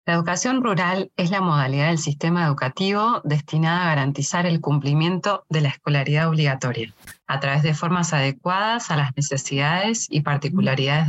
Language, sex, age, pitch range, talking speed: Spanish, female, 20-39, 145-190 Hz, 150 wpm